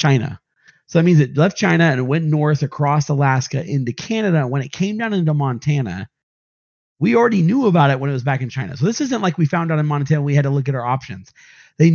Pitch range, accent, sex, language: 125-160 Hz, American, male, English